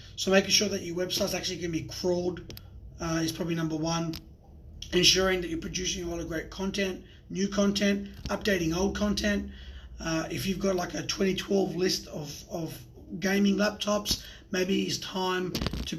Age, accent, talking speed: 30-49, Australian, 170 wpm